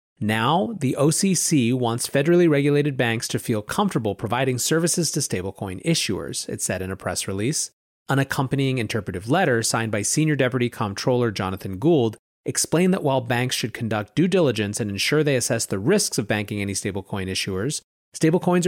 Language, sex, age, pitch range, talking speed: English, male, 30-49, 110-155 Hz, 165 wpm